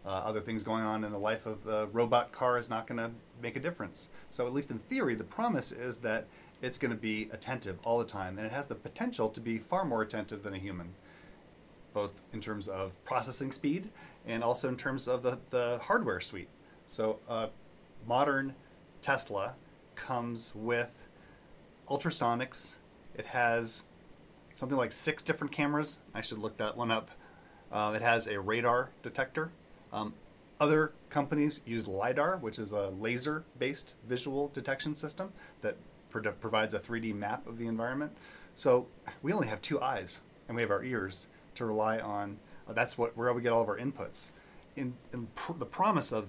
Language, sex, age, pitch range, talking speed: English, male, 30-49, 105-130 Hz, 180 wpm